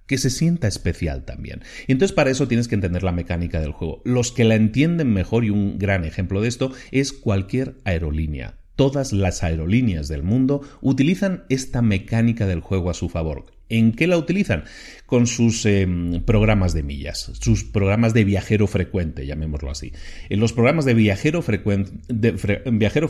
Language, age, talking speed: Spanish, 40-59, 165 wpm